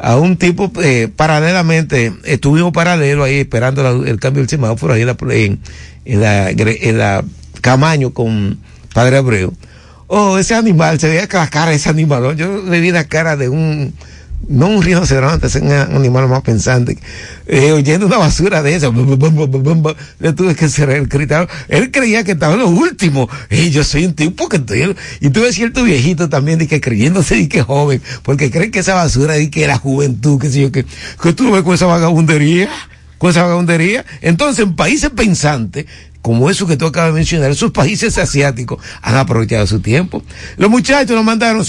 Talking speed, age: 195 wpm, 60-79